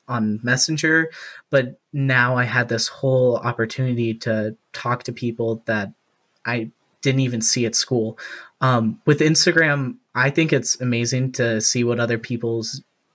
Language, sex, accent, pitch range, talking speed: English, male, American, 115-135 Hz, 145 wpm